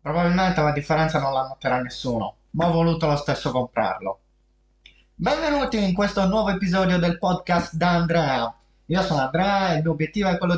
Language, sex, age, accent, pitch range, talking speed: Italian, male, 20-39, native, 140-170 Hz, 175 wpm